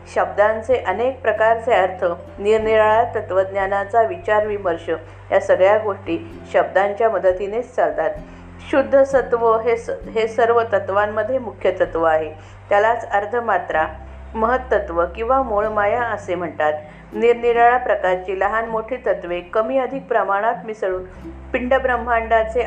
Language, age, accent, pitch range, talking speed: Marathi, 50-69, native, 180-230 Hz, 65 wpm